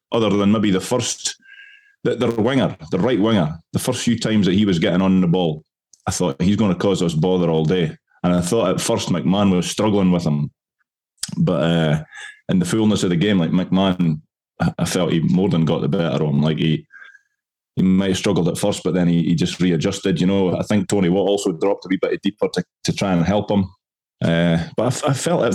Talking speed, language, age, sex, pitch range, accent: 240 wpm, English, 20-39, male, 90-115 Hz, British